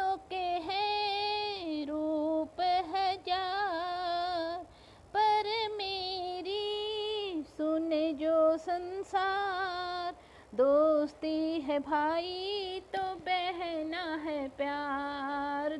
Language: Hindi